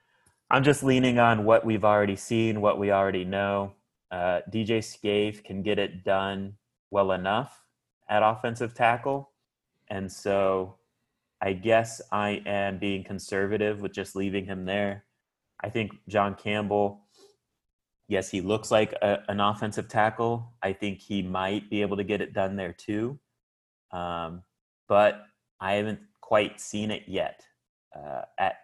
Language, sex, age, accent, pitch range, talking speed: English, male, 30-49, American, 95-105 Hz, 145 wpm